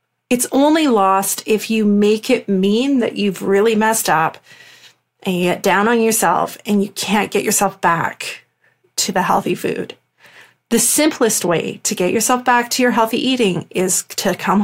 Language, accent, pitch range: English, American, 195-235 Hz